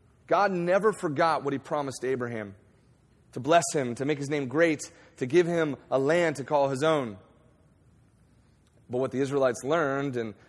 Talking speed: 170 wpm